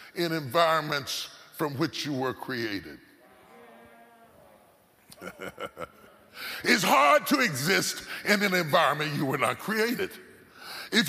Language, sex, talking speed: English, female, 105 wpm